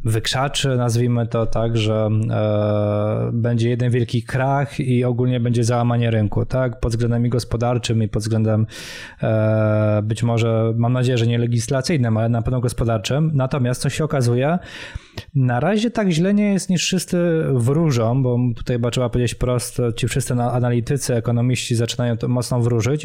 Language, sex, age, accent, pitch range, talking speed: Polish, male, 20-39, native, 120-145 Hz, 160 wpm